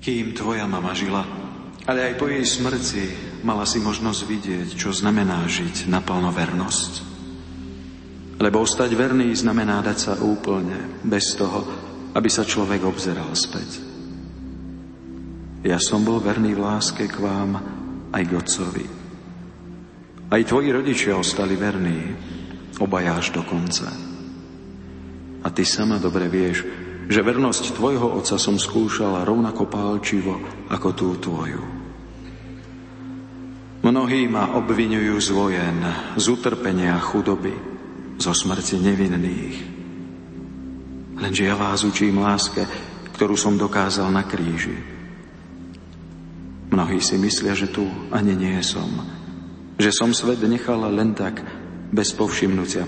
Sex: male